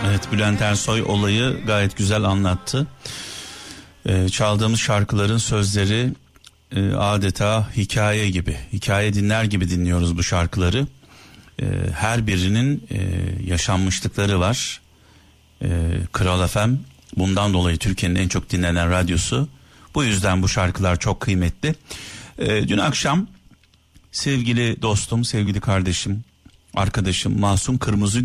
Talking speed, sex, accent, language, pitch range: 115 wpm, male, native, Turkish, 90-120 Hz